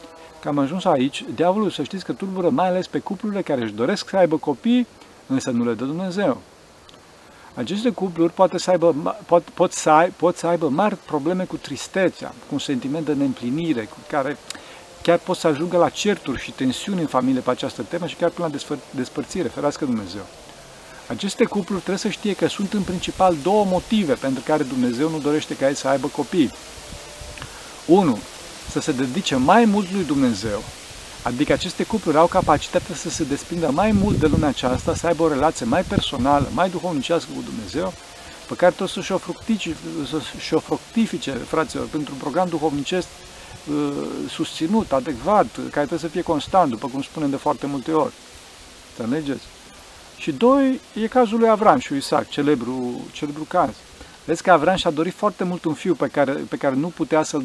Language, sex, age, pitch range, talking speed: Romanian, male, 50-69, 145-190 Hz, 180 wpm